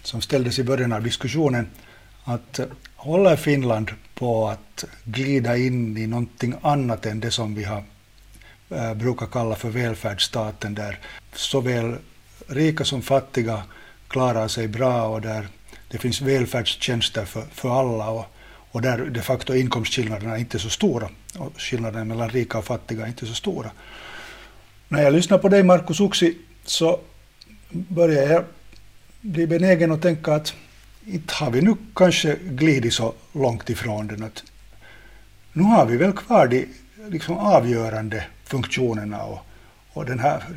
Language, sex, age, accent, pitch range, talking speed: Swedish, male, 50-69, Finnish, 110-145 Hz, 150 wpm